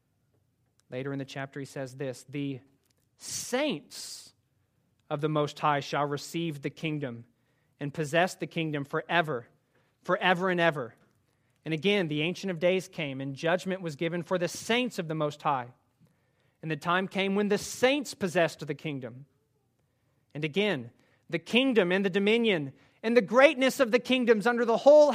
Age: 30-49